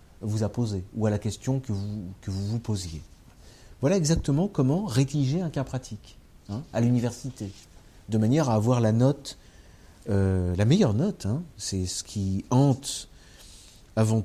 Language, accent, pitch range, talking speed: French, French, 100-135 Hz, 165 wpm